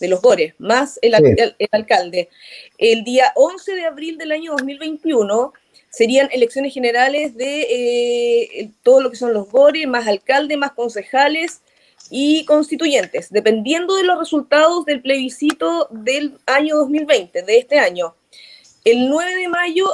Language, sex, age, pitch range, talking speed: Spanish, female, 20-39, 230-325 Hz, 145 wpm